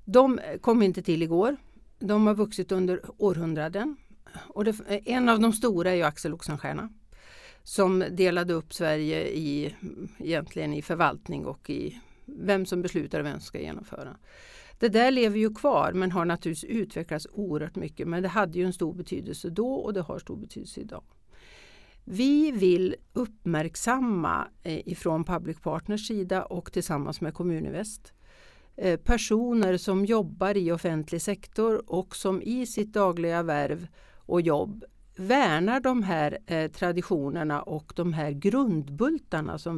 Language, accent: Swedish, native